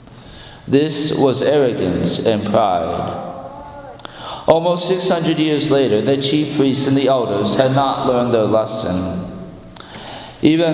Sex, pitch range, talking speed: male, 115-150 Hz, 115 wpm